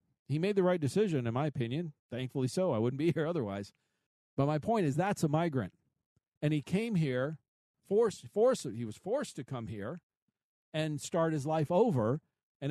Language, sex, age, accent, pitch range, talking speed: English, male, 50-69, American, 130-170 Hz, 190 wpm